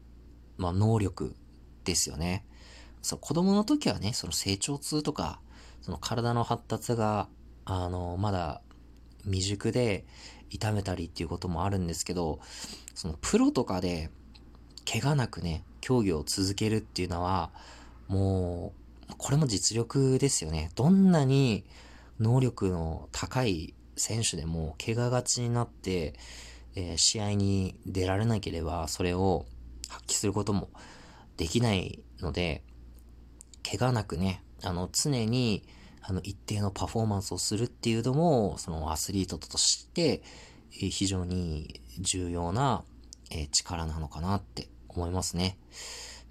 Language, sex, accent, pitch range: Japanese, male, native, 80-110 Hz